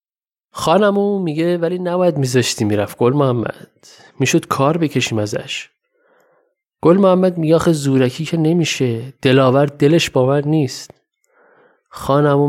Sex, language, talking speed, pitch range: male, Persian, 110 wpm, 130-185 Hz